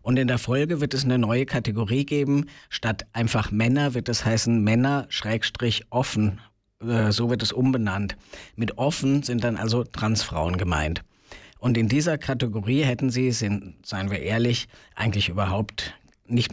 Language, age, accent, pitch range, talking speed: German, 50-69, German, 105-125 Hz, 145 wpm